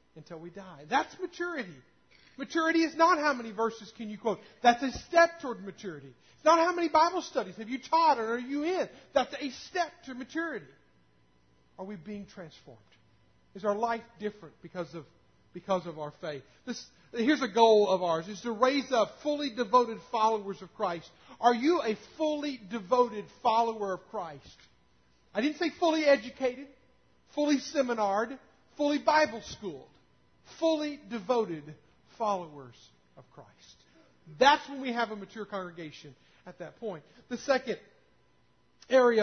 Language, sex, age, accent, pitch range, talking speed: English, male, 50-69, American, 185-260 Hz, 155 wpm